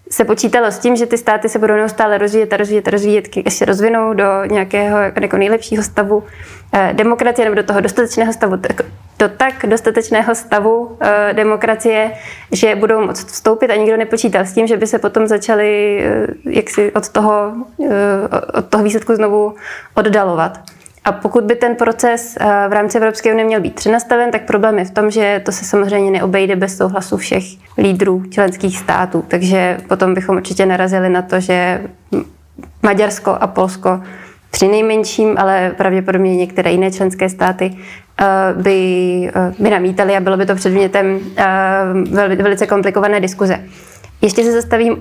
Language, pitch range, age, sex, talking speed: Czech, 190-215 Hz, 20-39, female, 150 wpm